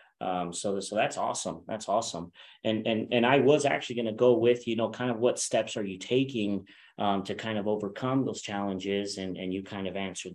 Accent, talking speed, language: American, 220 wpm, English